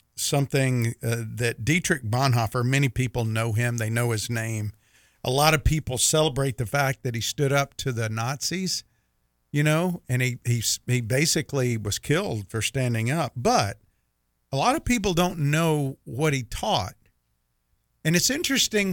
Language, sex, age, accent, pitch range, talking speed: English, male, 50-69, American, 115-145 Hz, 165 wpm